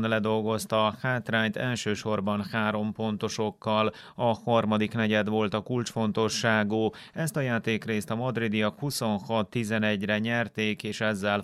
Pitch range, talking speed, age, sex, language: 105-115 Hz, 110 wpm, 30-49, male, Hungarian